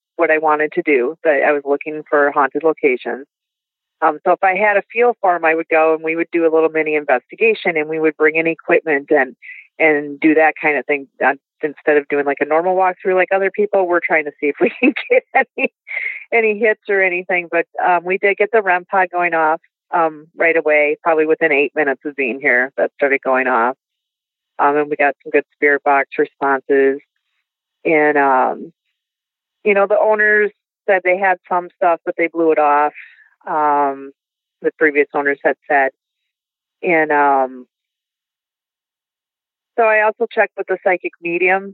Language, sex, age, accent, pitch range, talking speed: English, female, 40-59, American, 150-185 Hz, 190 wpm